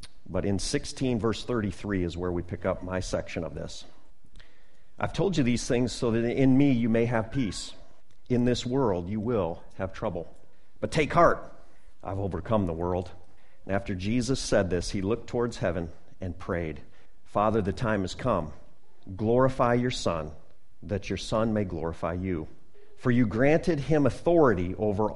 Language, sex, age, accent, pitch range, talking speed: English, male, 50-69, American, 90-115 Hz, 170 wpm